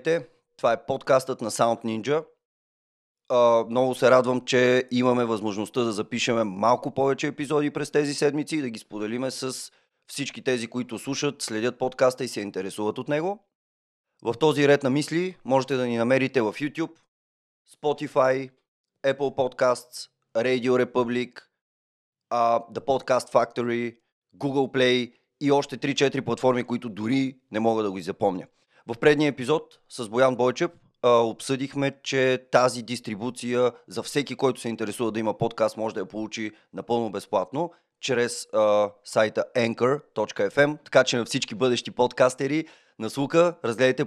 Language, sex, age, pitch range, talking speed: Bulgarian, male, 30-49, 115-145 Hz, 145 wpm